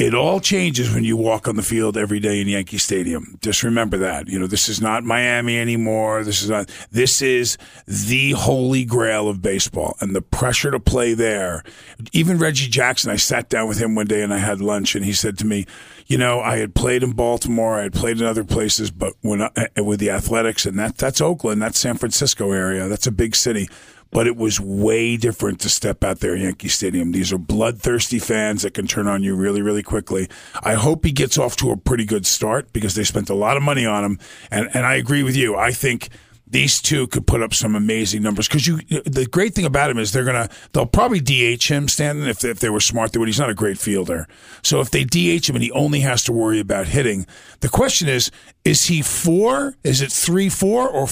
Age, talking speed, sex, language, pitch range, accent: 40-59, 235 wpm, male, English, 105-130 Hz, American